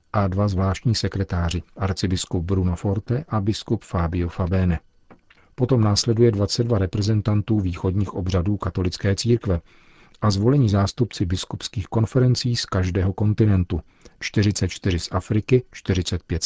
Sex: male